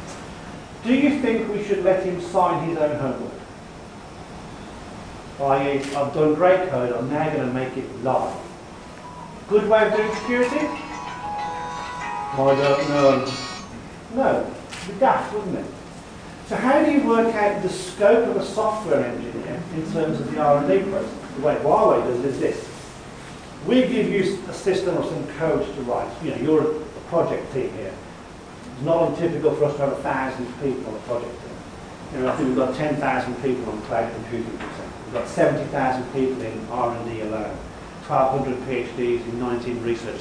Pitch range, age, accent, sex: 130-190 Hz, 40-59, British, male